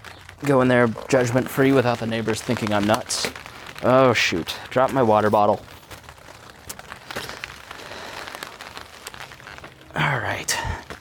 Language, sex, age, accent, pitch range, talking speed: English, male, 20-39, American, 105-125 Hz, 105 wpm